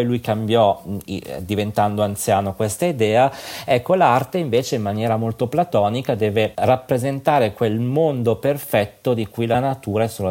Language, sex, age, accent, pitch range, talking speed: Italian, male, 40-59, native, 100-125 Hz, 140 wpm